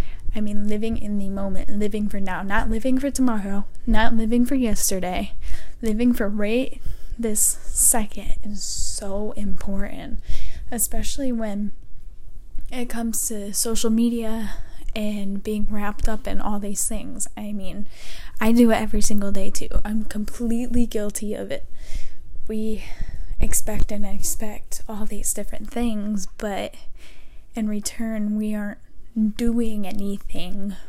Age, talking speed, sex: 10-29, 135 wpm, female